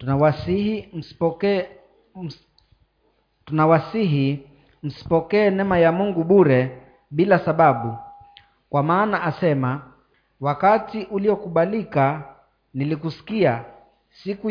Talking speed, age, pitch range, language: 70 wpm, 40-59, 145-200 Hz, Swahili